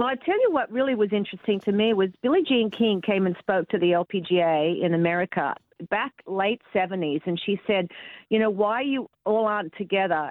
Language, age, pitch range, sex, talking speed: English, 50-69, 180-215 Hz, female, 205 wpm